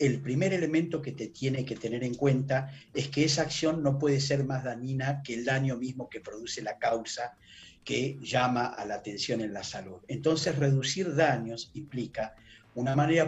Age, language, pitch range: 40-59, Spanish, 120-145 Hz